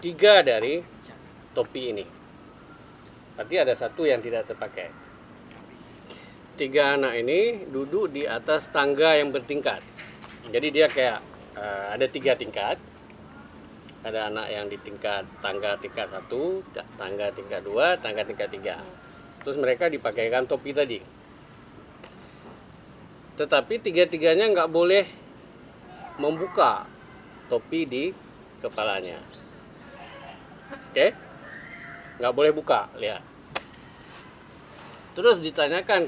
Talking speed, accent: 100 wpm, native